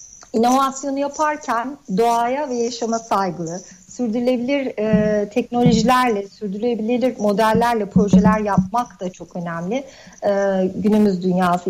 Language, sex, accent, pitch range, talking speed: Turkish, female, native, 200-250 Hz, 95 wpm